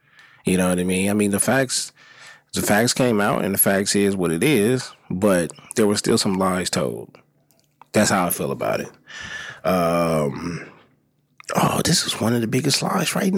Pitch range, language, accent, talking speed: 90-115 Hz, English, American, 195 wpm